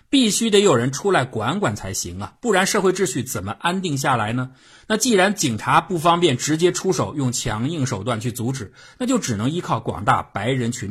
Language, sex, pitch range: Chinese, male, 110-160 Hz